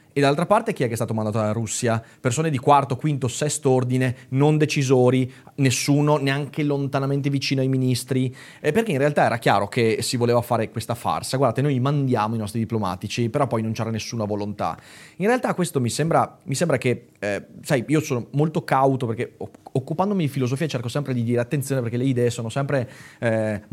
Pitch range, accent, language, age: 115-145 Hz, native, Italian, 30-49